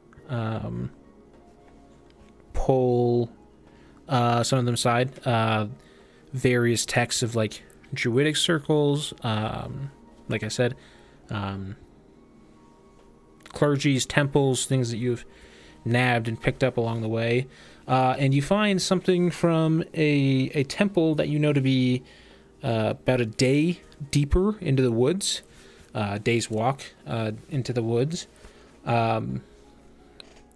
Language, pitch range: English, 110-135 Hz